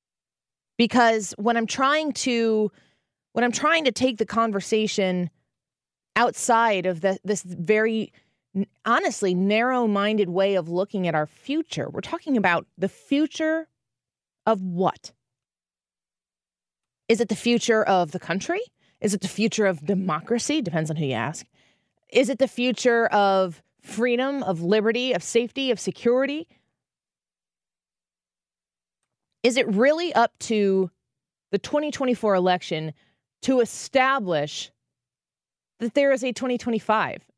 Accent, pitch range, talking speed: American, 175-240 Hz, 125 wpm